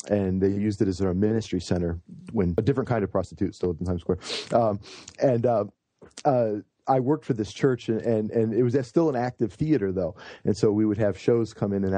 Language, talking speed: English, 235 wpm